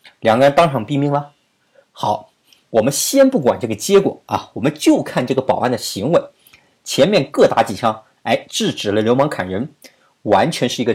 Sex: male